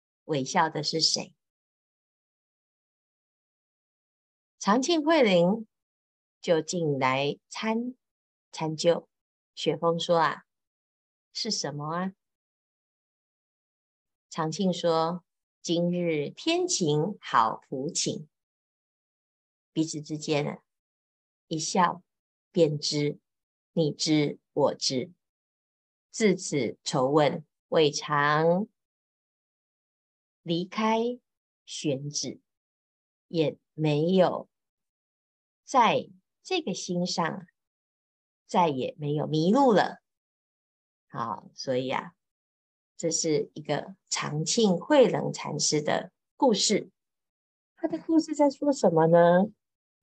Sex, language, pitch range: female, Chinese, 145-190 Hz